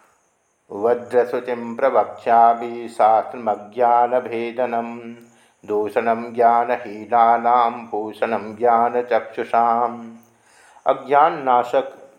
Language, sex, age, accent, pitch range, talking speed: Hindi, male, 50-69, native, 115-125 Hz, 50 wpm